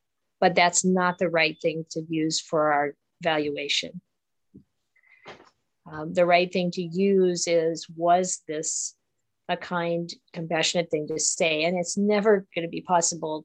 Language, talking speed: English, 145 wpm